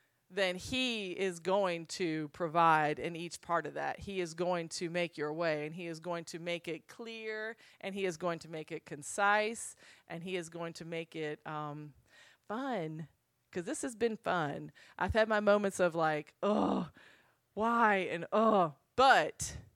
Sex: female